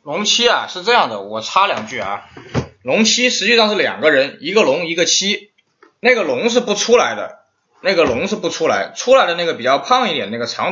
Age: 20-39